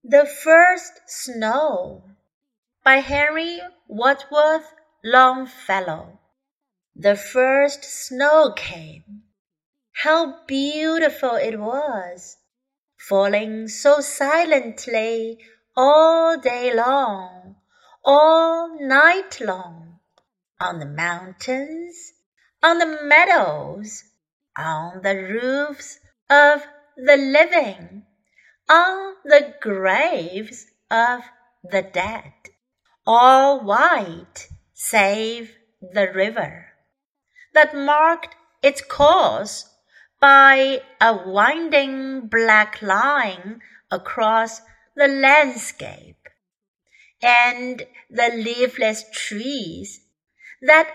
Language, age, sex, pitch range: Chinese, 30-49, female, 215-300 Hz